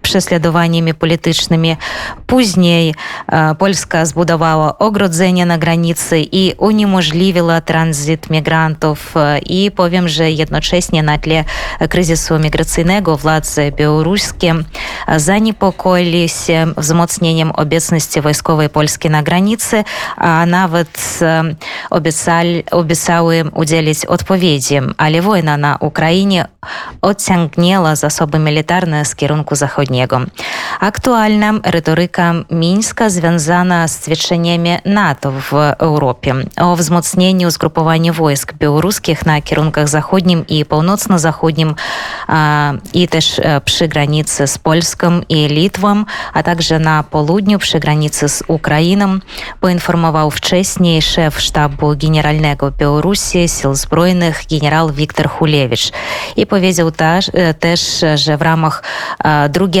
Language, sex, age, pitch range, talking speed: Polish, female, 20-39, 155-175 Hz, 100 wpm